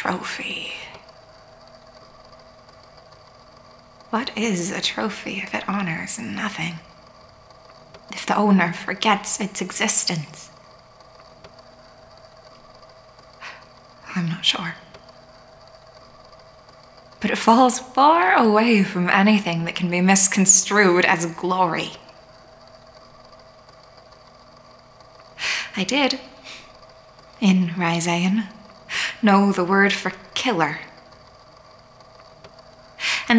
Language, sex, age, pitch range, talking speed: English, female, 20-39, 130-205 Hz, 75 wpm